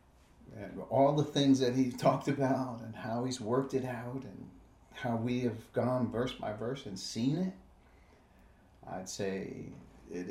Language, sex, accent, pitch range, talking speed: English, male, American, 85-130 Hz, 155 wpm